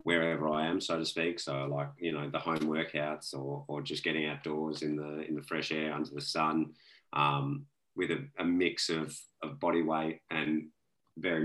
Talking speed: 200 wpm